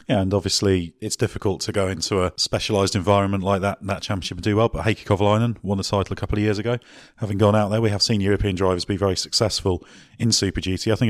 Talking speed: 245 wpm